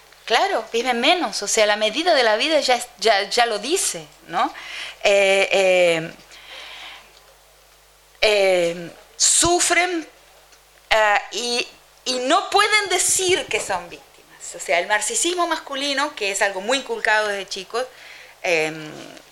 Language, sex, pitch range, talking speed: Spanish, female, 210-285 Hz, 130 wpm